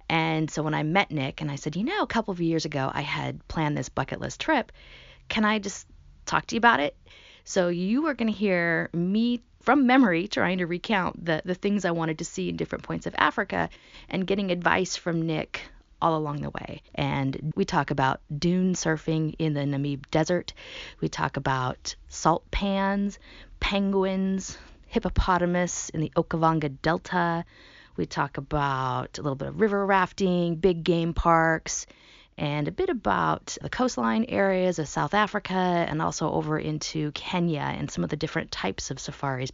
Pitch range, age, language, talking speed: 145-195 Hz, 30-49, English, 180 wpm